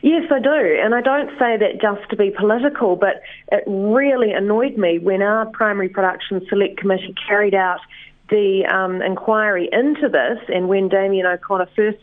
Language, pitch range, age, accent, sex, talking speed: English, 185-235 Hz, 30-49, Australian, female, 175 wpm